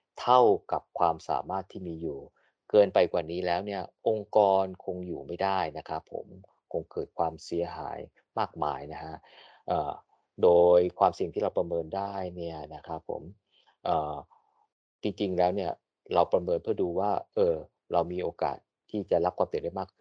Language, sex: Thai, male